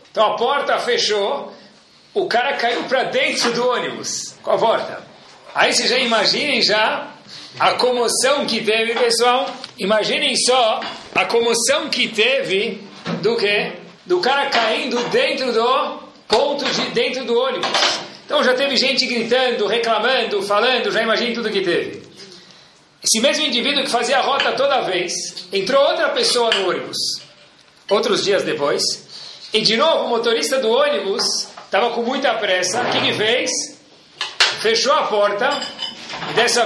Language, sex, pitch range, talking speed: Portuguese, male, 215-275 Hz, 145 wpm